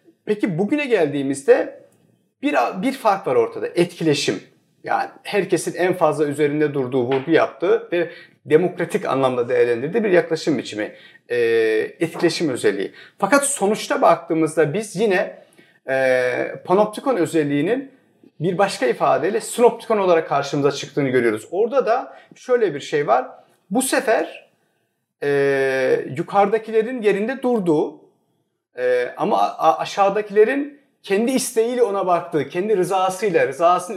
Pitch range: 165-270 Hz